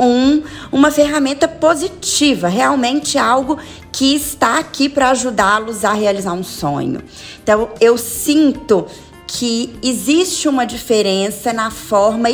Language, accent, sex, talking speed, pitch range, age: Portuguese, Brazilian, female, 115 wpm, 195-260 Hz, 20-39